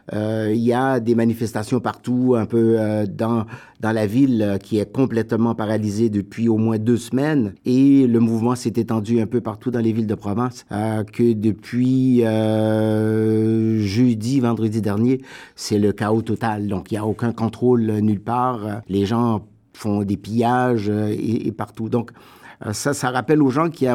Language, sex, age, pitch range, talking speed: French, male, 50-69, 105-120 Hz, 190 wpm